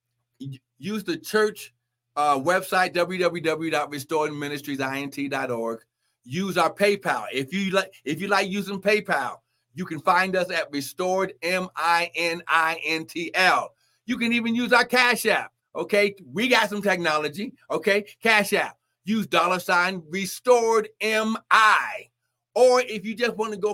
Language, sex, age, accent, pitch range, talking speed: English, male, 60-79, American, 135-200 Hz, 125 wpm